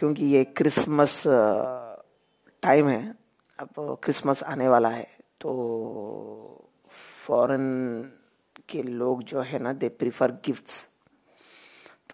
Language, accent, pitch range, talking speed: Hindi, native, 130-145 Hz, 100 wpm